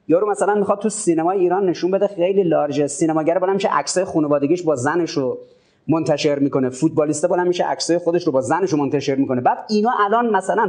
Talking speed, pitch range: 195 wpm, 145-200 Hz